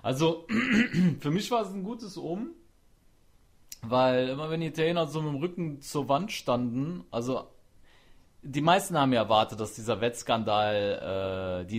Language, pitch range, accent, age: German, 105-150 Hz, German, 30-49